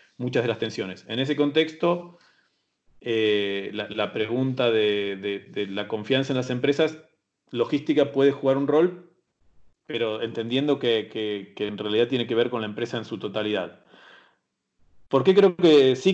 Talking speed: 165 wpm